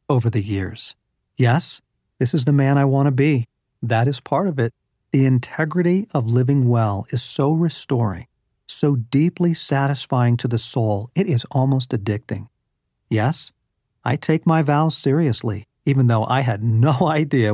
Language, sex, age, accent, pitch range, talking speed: English, male, 40-59, American, 115-150 Hz, 160 wpm